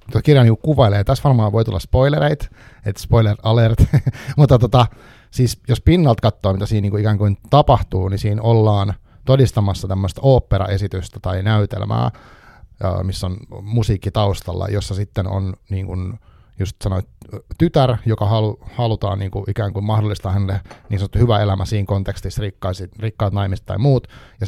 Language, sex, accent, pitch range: Finnish, male, native, 100-115 Hz